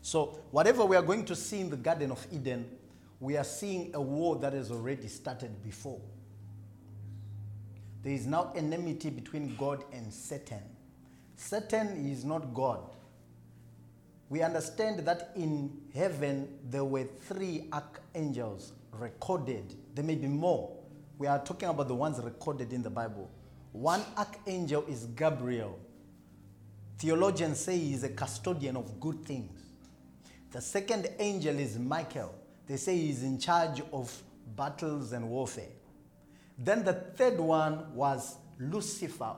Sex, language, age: male, English, 40-59